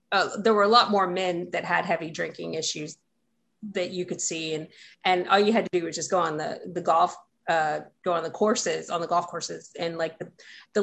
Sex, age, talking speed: female, 40-59, 240 wpm